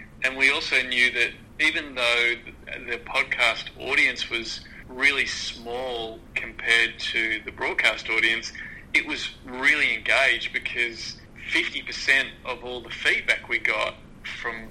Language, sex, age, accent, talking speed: English, male, 20-39, Australian, 125 wpm